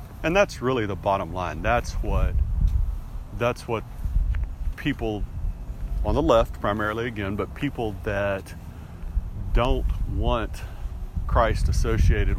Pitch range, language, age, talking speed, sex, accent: 85-120 Hz, English, 40-59, 110 wpm, male, American